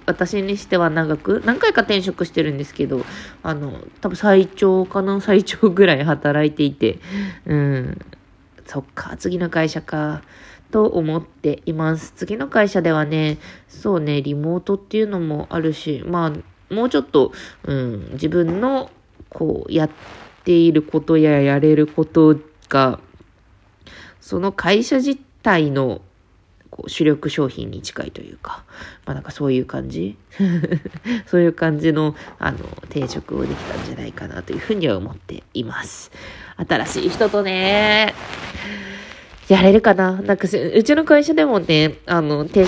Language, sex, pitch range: Japanese, female, 145-195 Hz